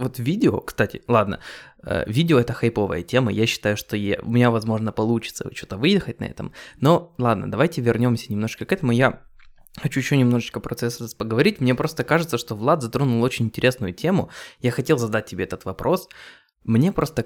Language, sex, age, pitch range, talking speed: Russian, male, 20-39, 110-130 Hz, 175 wpm